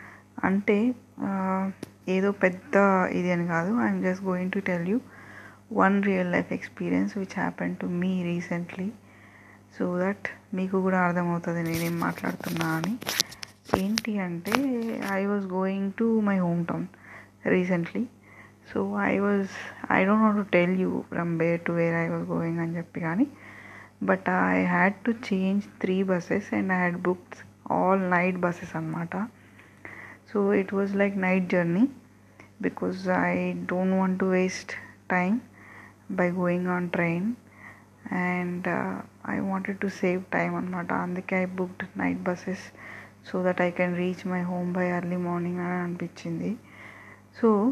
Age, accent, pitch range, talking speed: 20-39, native, 170-195 Hz, 145 wpm